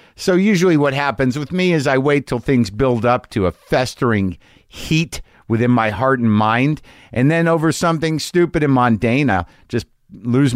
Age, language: 50-69, English